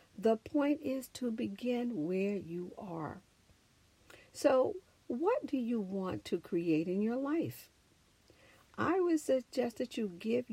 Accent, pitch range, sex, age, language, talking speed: American, 180-265 Hz, female, 60-79, English, 135 wpm